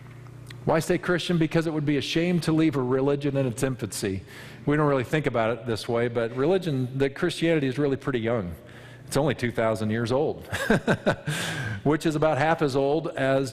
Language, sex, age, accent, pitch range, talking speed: English, male, 40-59, American, 120-145 Hz, 195 wpm